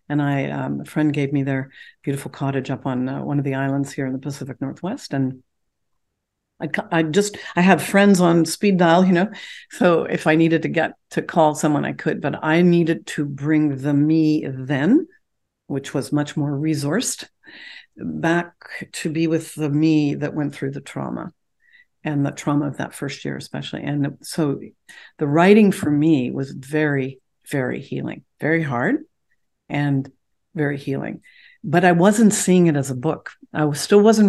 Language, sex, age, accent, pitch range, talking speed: English, female, 60-79, American, 145-175 Hz, 180 wpm